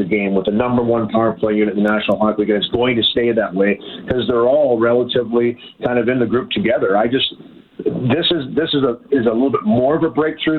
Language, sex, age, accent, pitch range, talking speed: English, male, 40-59, American, 105-130 Hz, 260 wpm